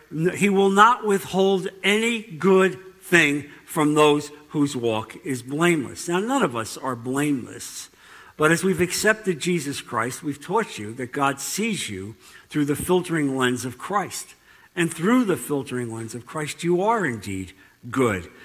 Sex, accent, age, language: male, American, 60-79, English